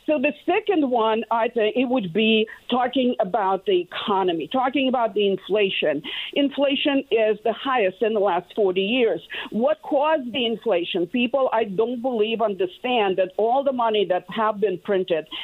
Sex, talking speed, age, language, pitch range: female, 165 wpm, 50-69, English, 200-260 Hz